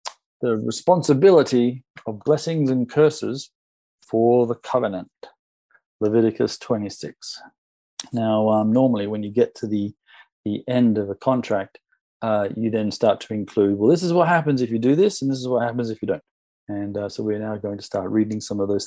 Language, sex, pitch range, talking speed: English, male, 105-130 Hz, 190 wpm